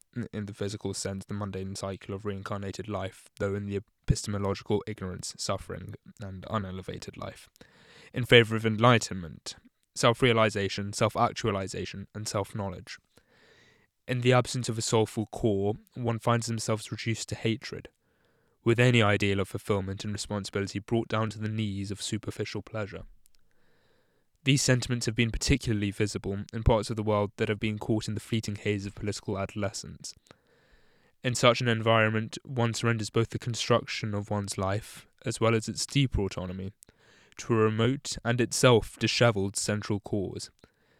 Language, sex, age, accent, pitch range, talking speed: English, male, 10-29, British, 100-115 Hz, 150 wpm